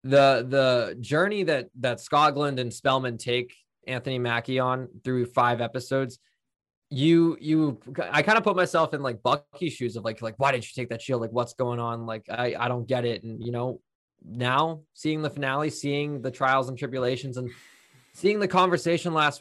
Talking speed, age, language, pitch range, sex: 190 wpm, 20-39, English, 120-140 Hz, male